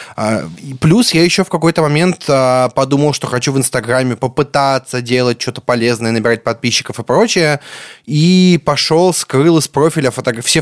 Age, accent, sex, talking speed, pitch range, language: 20-39, native, male, 140 wpm, 130-185 Hz, Russian